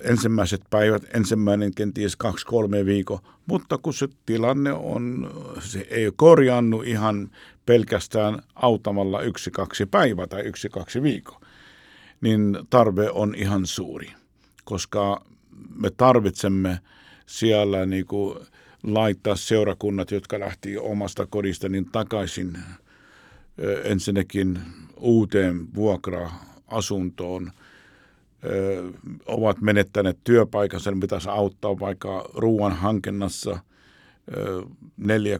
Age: 50-69